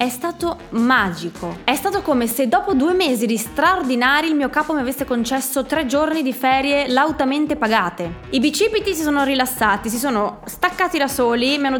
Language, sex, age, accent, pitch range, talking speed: Italian, female, 20-39, native, 215-275 Hz, 185 wpm